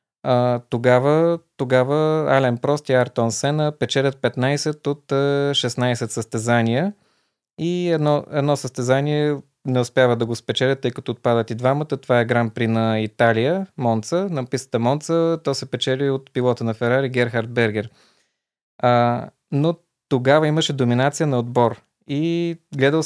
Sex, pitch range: male, 115-140 Hz